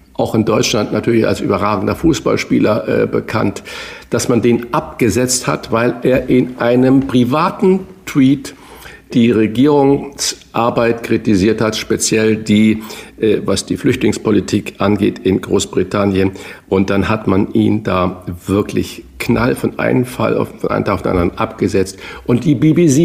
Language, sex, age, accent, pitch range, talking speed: German, male, 50-69, German, 105-135 Hz, 145 wpm